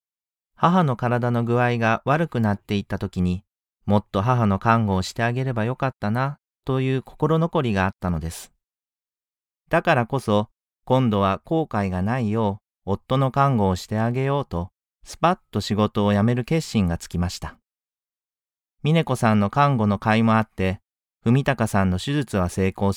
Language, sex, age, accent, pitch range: Japanese, male, 40-59, native, 95-130 Hz